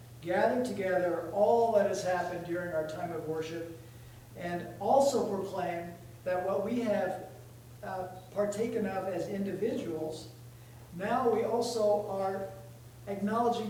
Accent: American